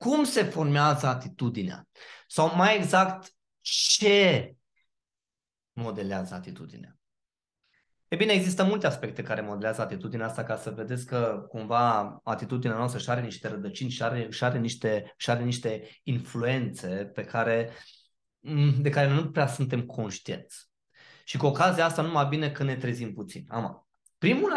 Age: 20-39